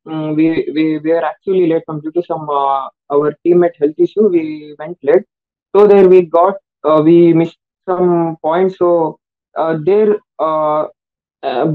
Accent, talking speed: native, 165 wpm